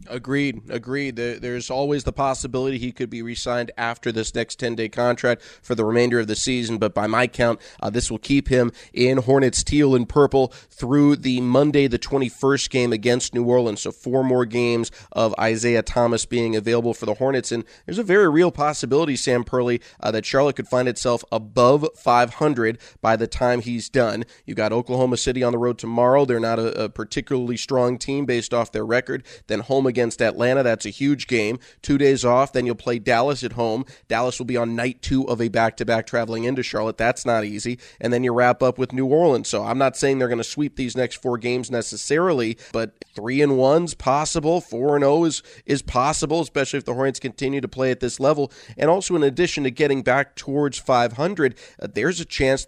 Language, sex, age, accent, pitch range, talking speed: English, male, 20-39, American, 115-135 Hz, 210 wpm